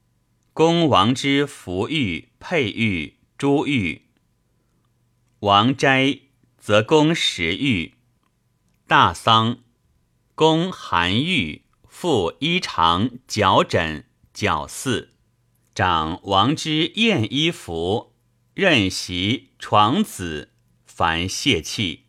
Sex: male